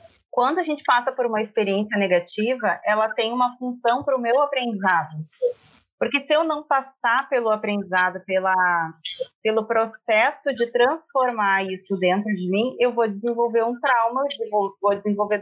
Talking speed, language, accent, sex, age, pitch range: 150 wpm, Portuguese, Brazilian, female, 30-49, 200-255 Hz